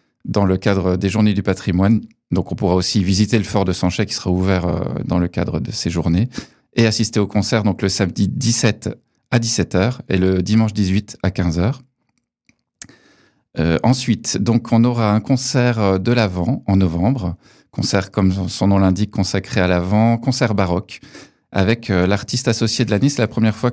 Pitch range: 95-115 Hz